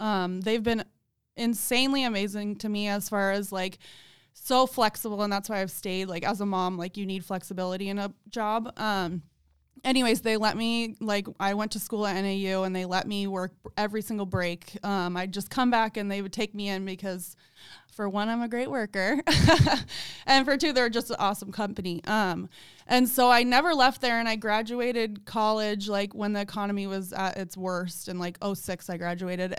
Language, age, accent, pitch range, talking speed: English, 20-39, American, 195-240 Hz, 200 wpm